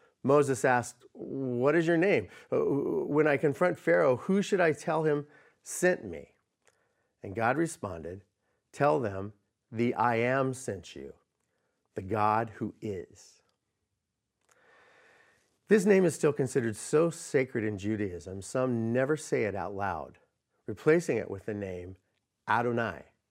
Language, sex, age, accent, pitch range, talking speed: English, male, 40-59, American, 105-145 Hz, 135 wpm